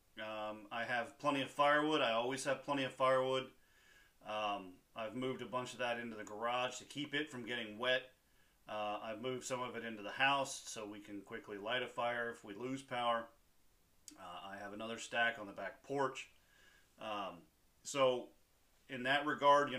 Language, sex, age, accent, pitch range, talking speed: English, male, 40-59, American, 105-130 Hz, 190 wpm